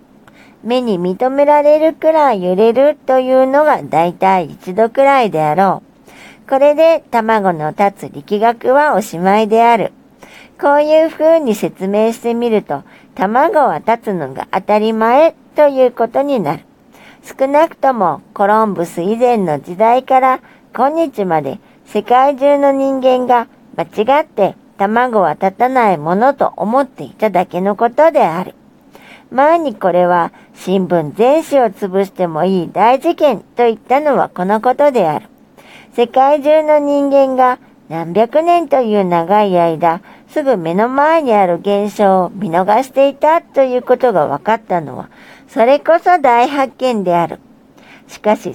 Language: Japanese